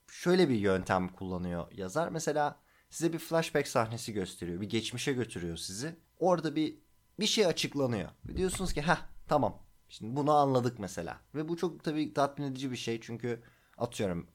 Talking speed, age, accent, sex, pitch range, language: 165 wpm, 30-49, native, male, 105-160 Hz, Turkish